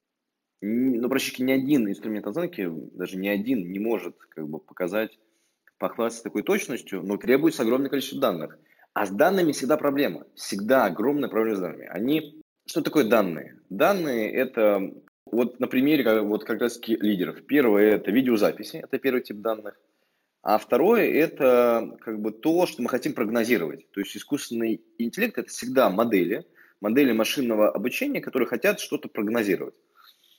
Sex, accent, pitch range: male, native, 105-135 Hz